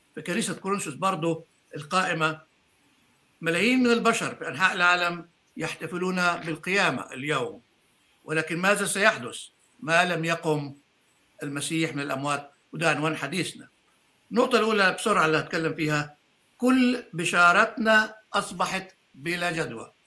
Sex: male